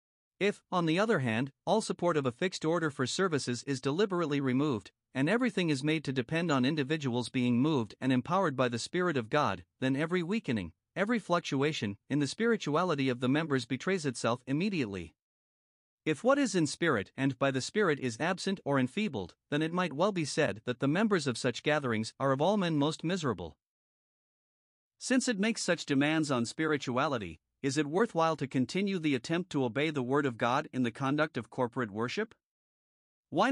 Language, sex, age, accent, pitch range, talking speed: English, male, 50-69, American, 130-175 Hz, 190 wpm